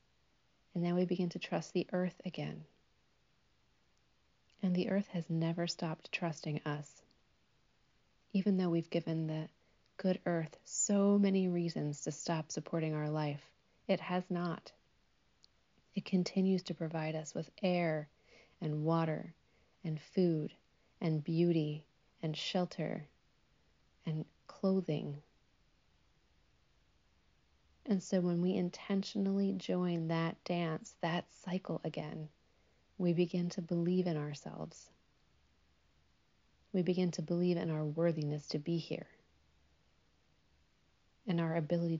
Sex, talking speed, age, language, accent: female, 115 wpm, 30-49, English, American